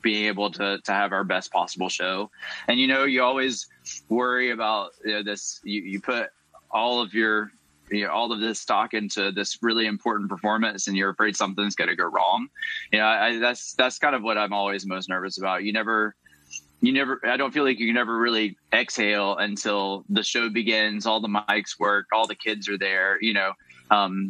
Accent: American